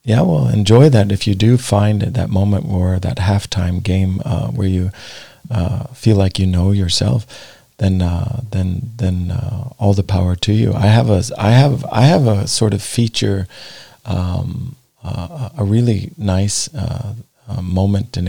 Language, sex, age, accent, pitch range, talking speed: English, male, 40-59, American, 95-110 Hz, 175 wpm